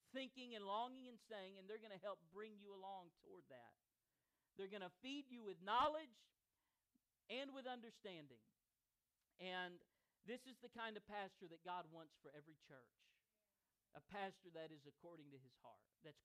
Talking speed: 175 wpm